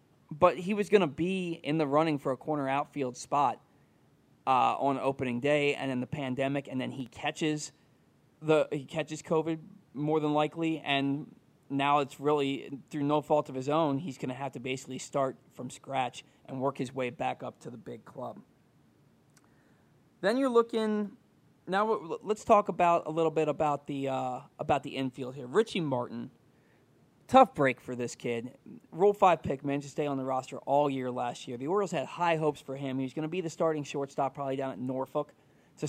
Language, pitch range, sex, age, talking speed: English, 135-165 Hz, male, 20-39, 200 wpm